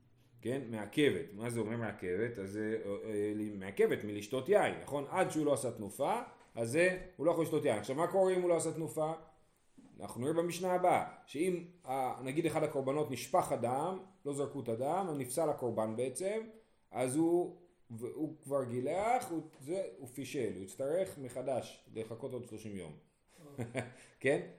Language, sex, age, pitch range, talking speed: Hebrew, male, 40-59, 120-175 Hz, 160 wpm